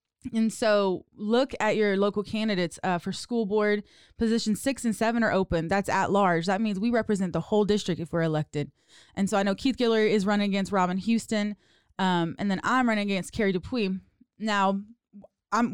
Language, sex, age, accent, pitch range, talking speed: English, female, 20-39, American, 195-230 Hz, 195 wpm